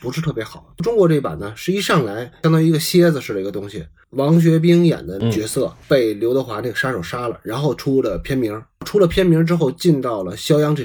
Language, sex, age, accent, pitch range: Chinese, male, 20-39, native, 125-170 Hz